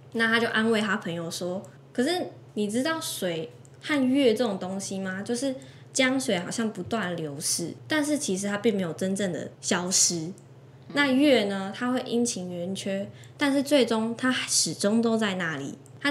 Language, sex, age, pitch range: Chinese, female, 10-29, 175-230 Hz